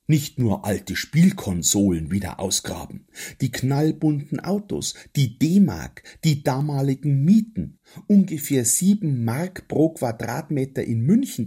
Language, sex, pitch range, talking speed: German, male, 100-145 Hz, 110 wpm